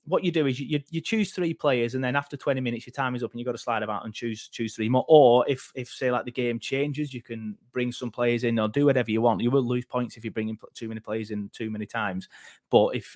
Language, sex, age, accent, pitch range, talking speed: English, male, 30-49, British, 120-145 Hz, 295 wpm